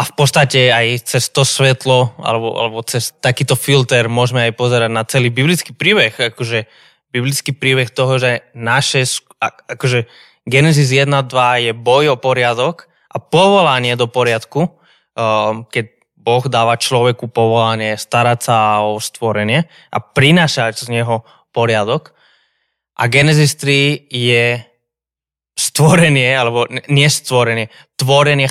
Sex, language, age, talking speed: male, Slovak, 20-39, 125 wpm